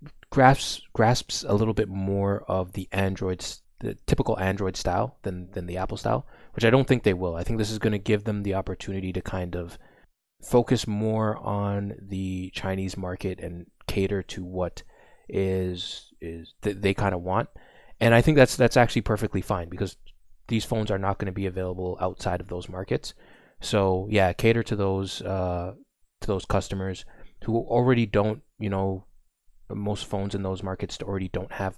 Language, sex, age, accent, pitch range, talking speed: English, male, 20-39, American, 95-105 Hz, 185 wpm